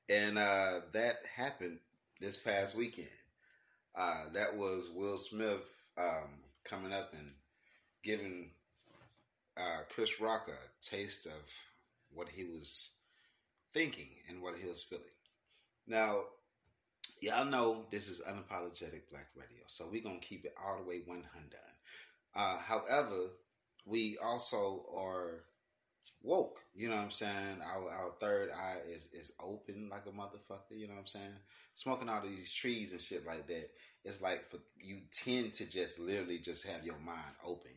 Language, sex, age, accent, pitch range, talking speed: English, male, 30-49, American, 85-105 Hz, 155 wpm